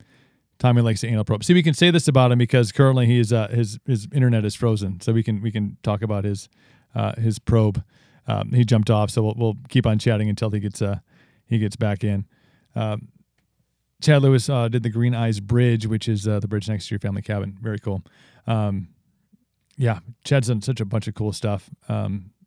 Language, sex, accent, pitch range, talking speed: English, male, American, 105-130 Hz, 220 wpm